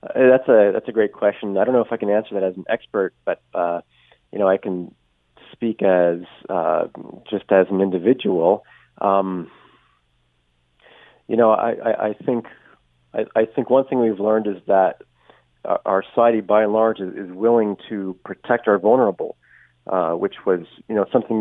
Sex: male